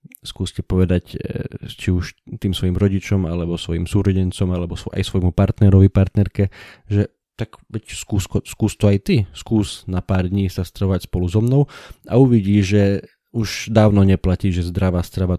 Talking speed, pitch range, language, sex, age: 155 wpm, 90-105 Hz, Slovak, male, 20-39